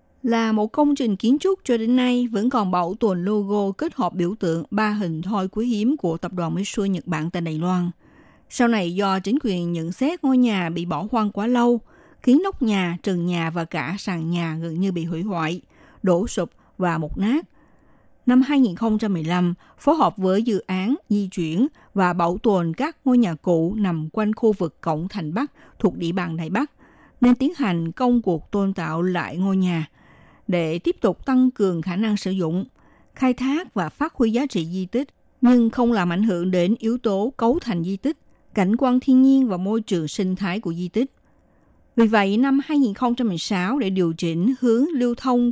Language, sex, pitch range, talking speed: Vietnamese, female, 175-240 Hz, 205 wpm